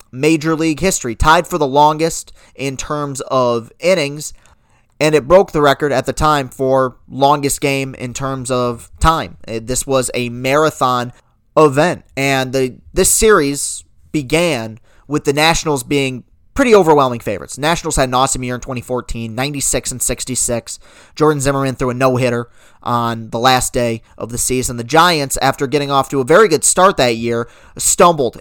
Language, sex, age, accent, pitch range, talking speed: English, male, 30-49, American, 120-150 Hz, 165 wpm